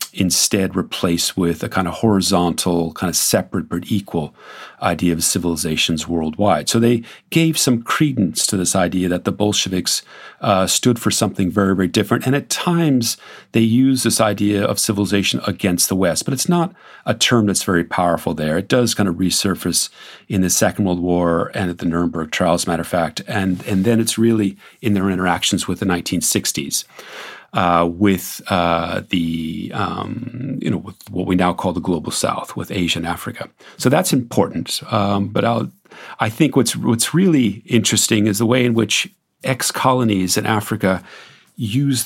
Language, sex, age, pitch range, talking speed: English, male, 40-59, 90-115 Hz, 175 wpm